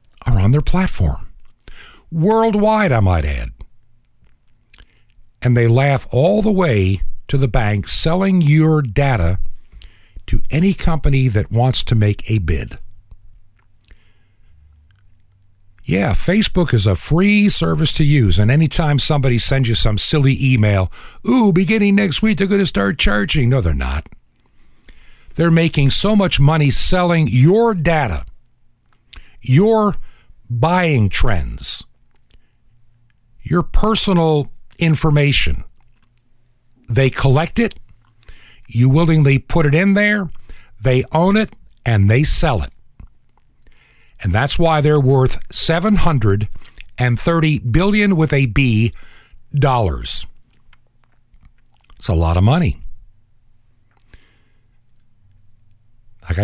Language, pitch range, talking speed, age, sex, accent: English, 105-160 Hz, 110 wpm, 50-69, male, American